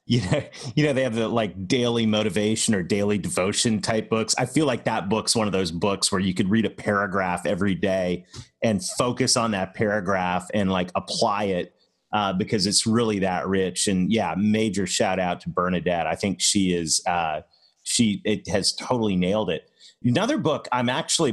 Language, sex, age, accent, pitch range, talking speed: English, male, 30-49, American, 95-125 Hz, 195 wpm